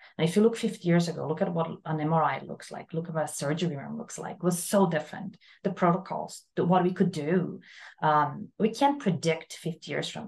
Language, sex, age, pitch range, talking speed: English, female, 30-49, 160-185 Hz, 220 wpm